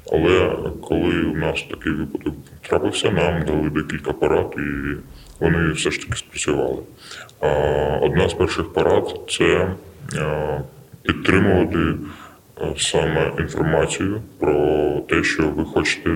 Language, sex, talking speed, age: Ukrainian, female, 115 wpm, 20-39